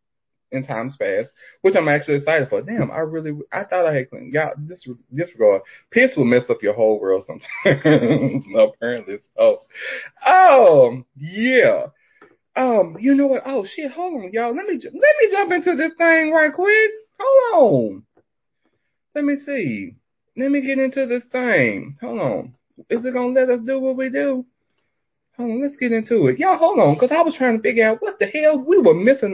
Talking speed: 190 wpm